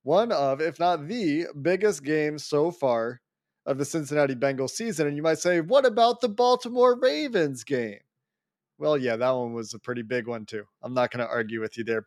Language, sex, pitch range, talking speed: English, male, 120-155 Hz, 210 wpm